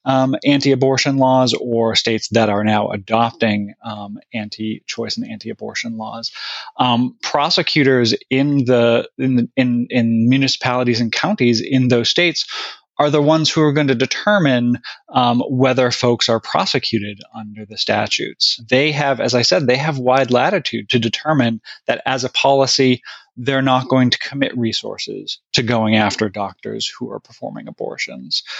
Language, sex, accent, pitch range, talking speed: English, male, American, 110-130 Hz, 155 wpm